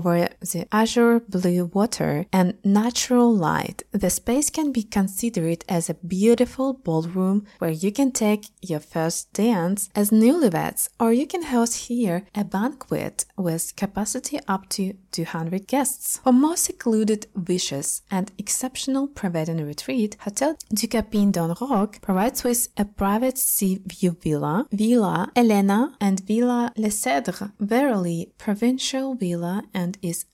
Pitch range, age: 185-245 Hz, 20-39